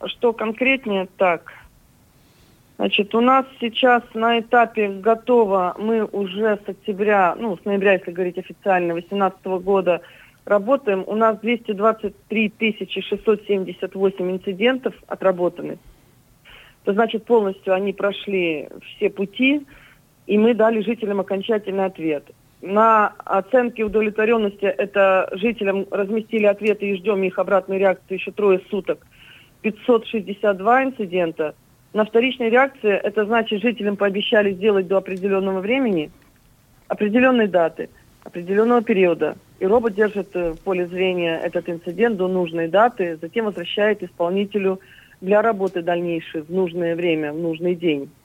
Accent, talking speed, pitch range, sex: native, 120 wpm, 180-220 Hz, female